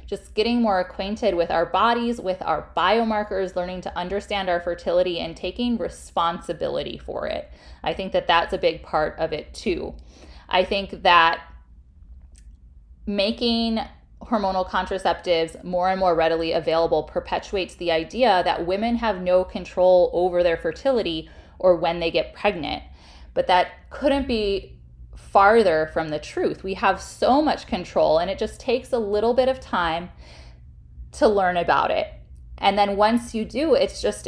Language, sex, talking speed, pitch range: English, female, 160 wpm, 165-210 Hz